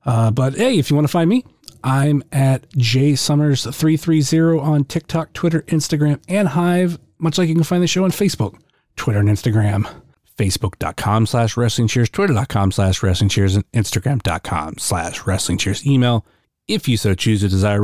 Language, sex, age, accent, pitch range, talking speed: English, male, 30-49, American, 105-140 Hz, 175 wpm